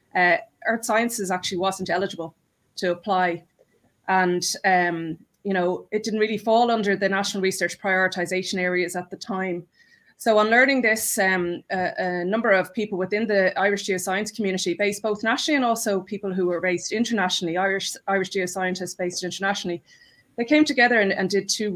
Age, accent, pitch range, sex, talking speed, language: 20-39, Irish, 180-215 Hz, female, 170 wpm, English